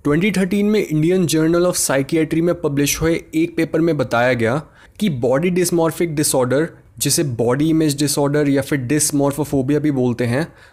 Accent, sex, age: native, male, 20-39